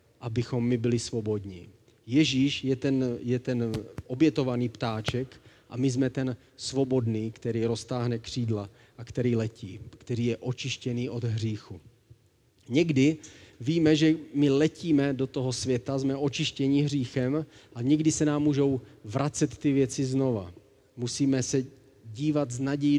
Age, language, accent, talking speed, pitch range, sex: 40-59, Czech, native, 135 wpm, 120-140 Hz, male